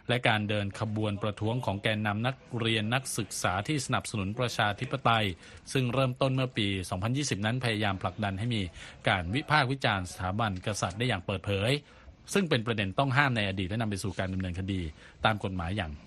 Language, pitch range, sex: Thai, 100-125 Hz, male